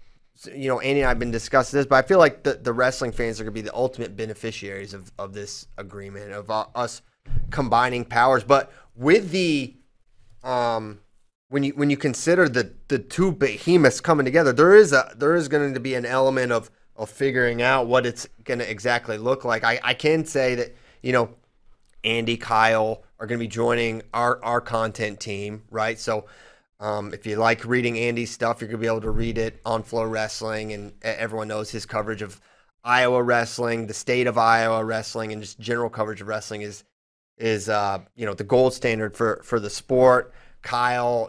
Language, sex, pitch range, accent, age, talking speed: English, male, 110-130 Hz, American, 30-49, 200 wpm